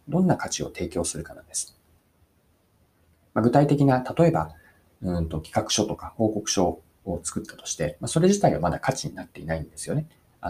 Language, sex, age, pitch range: Japanese, male, 40-59, 80-130 Hz